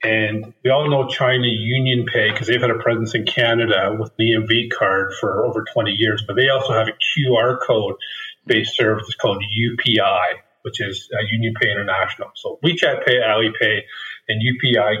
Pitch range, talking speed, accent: 115-135 Hz, 180 wpm, American